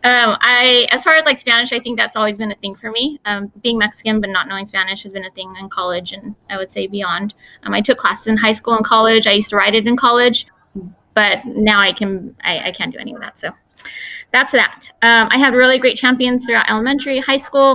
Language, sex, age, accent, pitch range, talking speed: English, female, 20-39, American, 205-245 Hz, 250 wpm